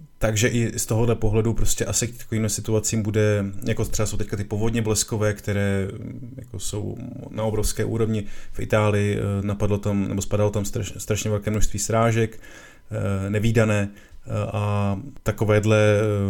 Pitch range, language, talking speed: 100-110 Hz, Czech, 145 wpm